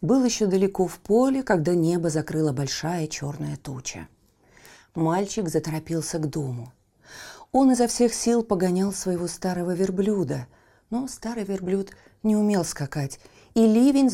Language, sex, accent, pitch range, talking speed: Russian, female, native, 155-215 Hz, 130 wpm